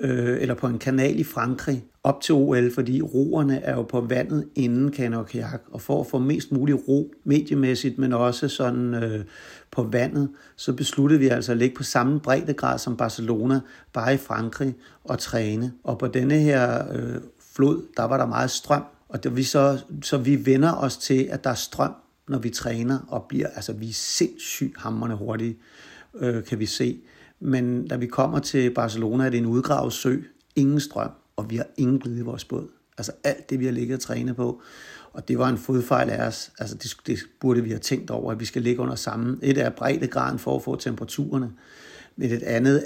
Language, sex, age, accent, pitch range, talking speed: Danish, male, 60-79, native, 115-135 Hz, 205 wpm